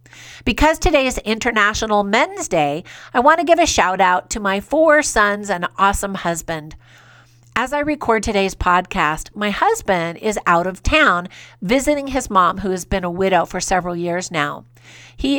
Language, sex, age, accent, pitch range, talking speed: English, female, 50-69, American, 180-240 Hz, 170 wpm